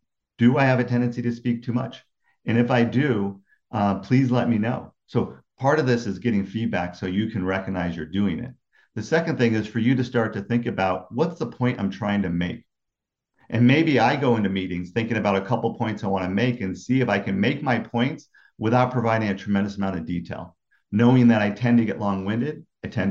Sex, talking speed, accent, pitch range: male, 230 wpm, American, 95-120 Hz